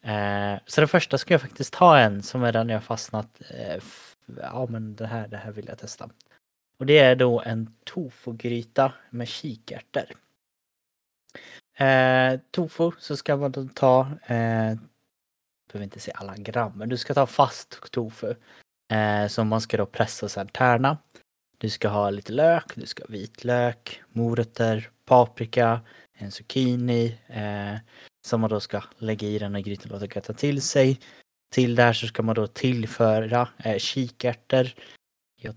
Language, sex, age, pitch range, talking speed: Swedish, male, 20-39, 110-130 Hz, 165 wpm